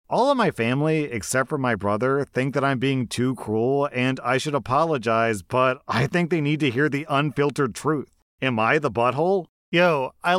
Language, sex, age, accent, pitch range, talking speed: English, male, 30-49, American, 155-245 Hz, 195 wpm